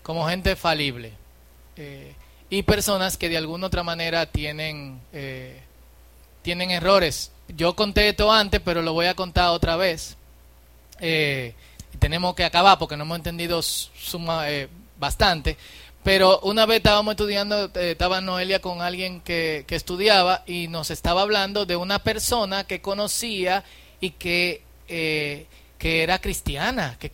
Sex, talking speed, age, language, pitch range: male, 140 wpm, 30-49, Spanish, 125-185 Hz